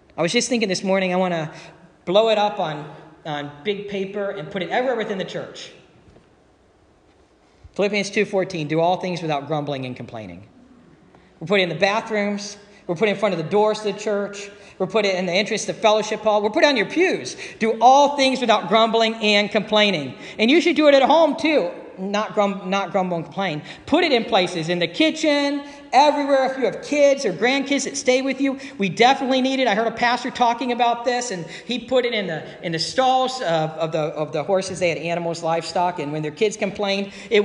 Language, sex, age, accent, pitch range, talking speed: English, male, 40-59, American, 180-245 Hz, 225 wpm